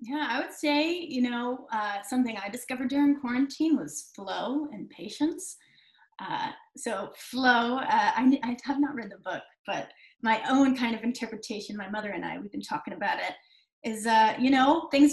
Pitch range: 230-295 Hz